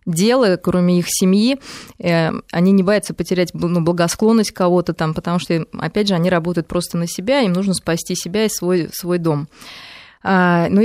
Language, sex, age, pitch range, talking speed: Russian, female, 20-39, 170-210 Hz, 165 wpm